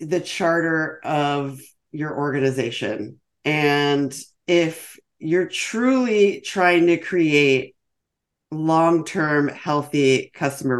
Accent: American